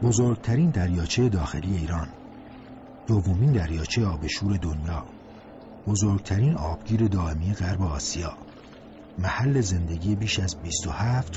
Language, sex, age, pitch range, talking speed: Persian, male, 50-69, 80-105 Hz, 95 wpm